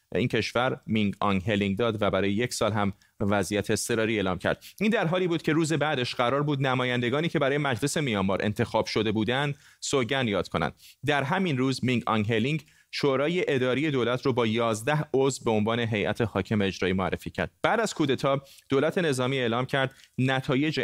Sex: male